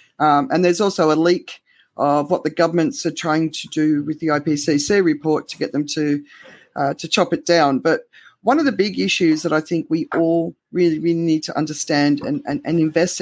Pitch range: 150-180 Hz